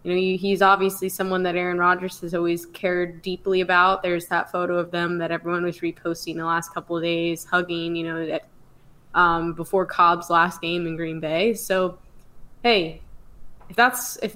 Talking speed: 185 wpm